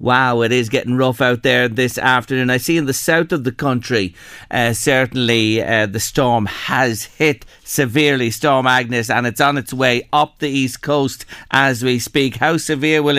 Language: English